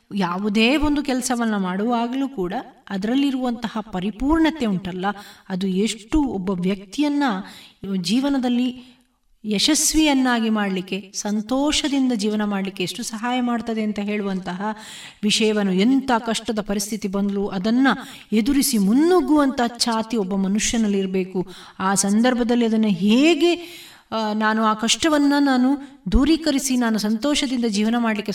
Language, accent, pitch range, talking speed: Kannada, native, 200-250 Hz, 100 wpm